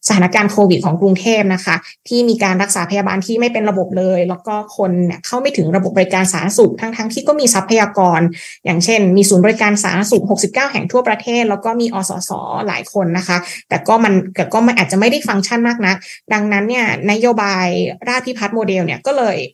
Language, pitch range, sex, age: Thai, 185-230 Hz, female, 20-39